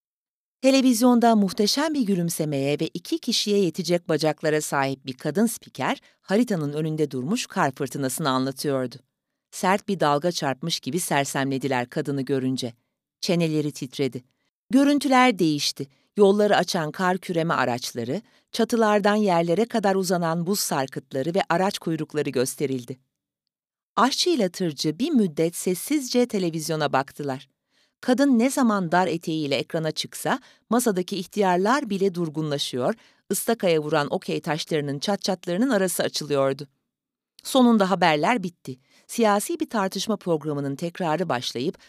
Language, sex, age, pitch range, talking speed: Turkish, female, 40-59, 145-225 Hz, 115 wpm